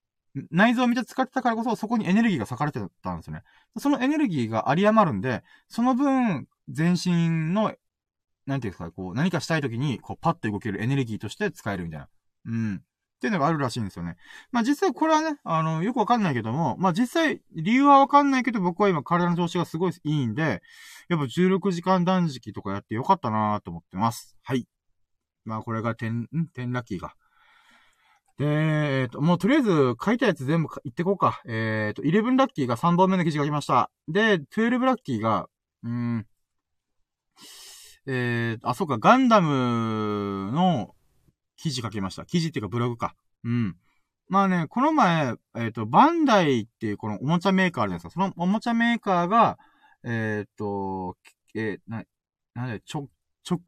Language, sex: Japanese, male